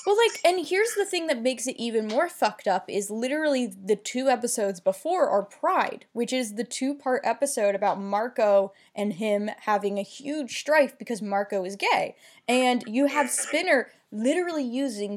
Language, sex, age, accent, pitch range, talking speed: English, female, 10-29, American, 215-285 Hz, 175 wpm